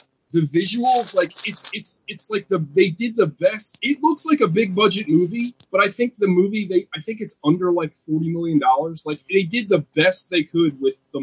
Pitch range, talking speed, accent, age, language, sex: 135-185 Hz, 220 wpm, American, 20-39, English, male